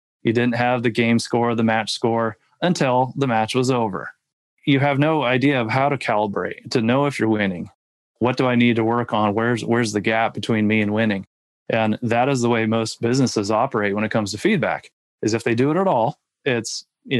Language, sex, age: English, male, 20-39